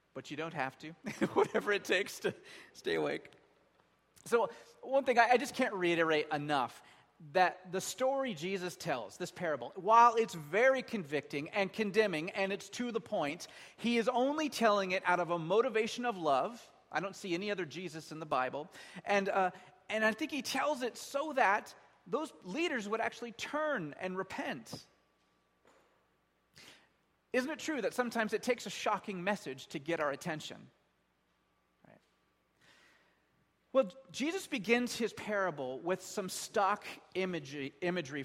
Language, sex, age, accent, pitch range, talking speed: English, male, 30-49, American, 165-235 Hz, 155 wpm